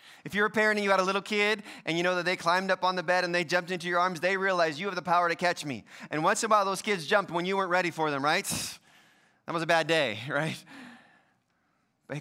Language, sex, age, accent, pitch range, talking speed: English, male, 20-39, American, 135-175 Hz, 280 wpm